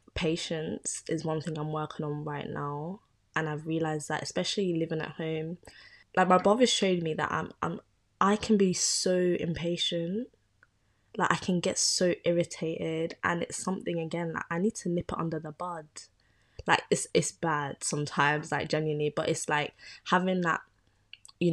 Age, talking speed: 20-39, 175 wpm